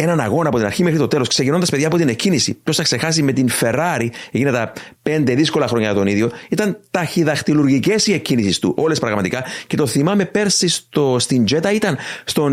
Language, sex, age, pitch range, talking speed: Greek, male, 30-49, 120-165 Hz, 200 wpm